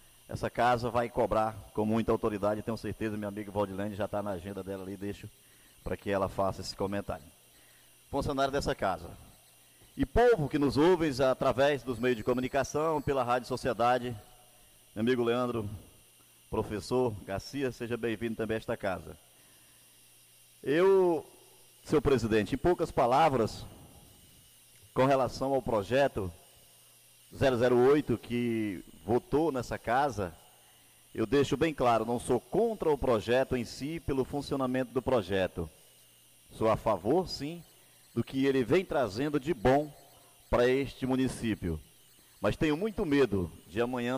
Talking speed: 140 wpm